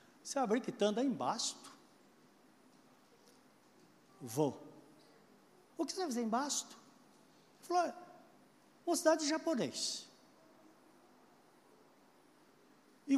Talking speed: 95 wpm